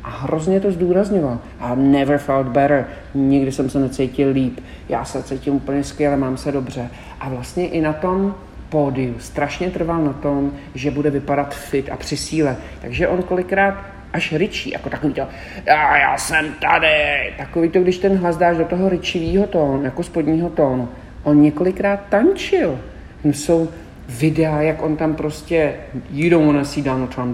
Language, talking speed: Czech, 170 wpm